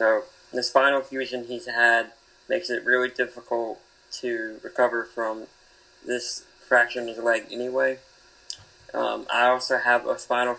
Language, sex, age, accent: English, male, 20-39, American